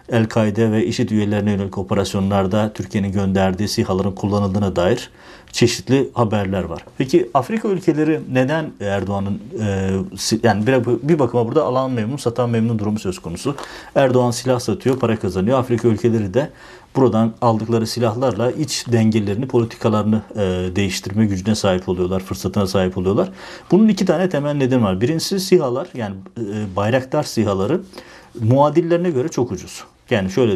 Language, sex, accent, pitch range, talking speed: Turkish, male, native, 100-125 Hz, 140 wpm